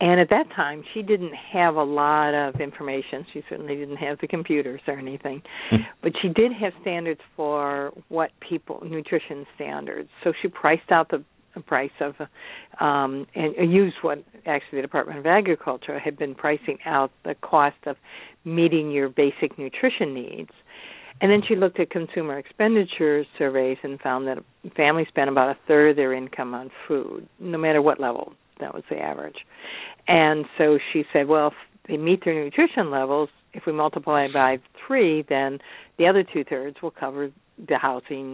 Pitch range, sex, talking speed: 135-170 Hz, female, 170 wpm